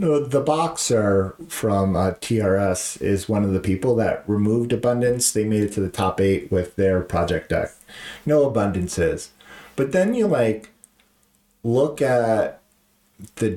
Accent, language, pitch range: American, English, 95-125 Hz